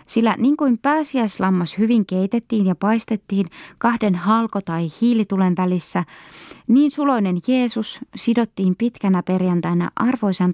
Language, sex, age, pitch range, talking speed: Finnish, female, 20-39, 165-220 Hz, 115 wpm